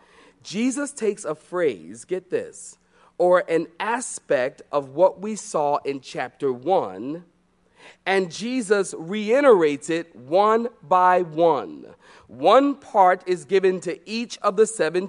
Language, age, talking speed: English, 40-59, 125 wpm